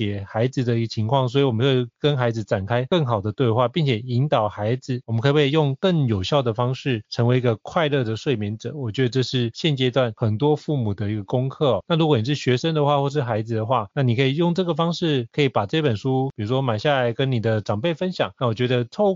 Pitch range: 115-145 Hz